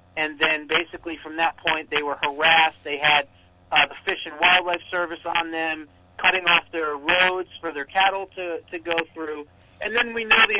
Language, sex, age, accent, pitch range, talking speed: English, male, 40-59, American, 145-185 Hz, 200 wpm